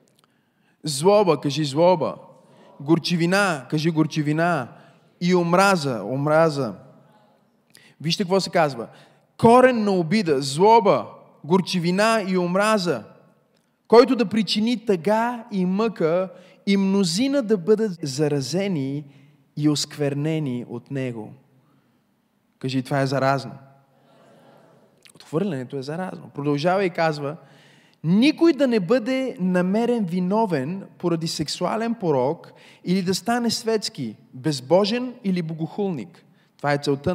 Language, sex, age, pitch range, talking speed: Bulgarian, male, 20-39, 145-205 Hz, 105 wpm